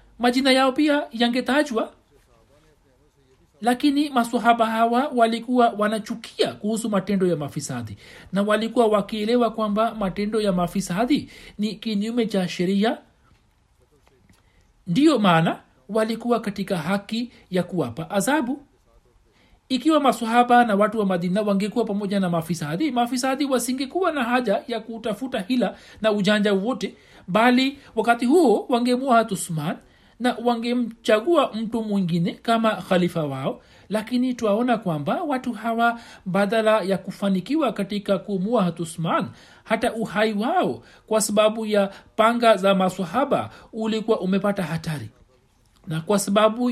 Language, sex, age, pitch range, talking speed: Swahili, male, 60-79, 190-235 Hz, 115 wpm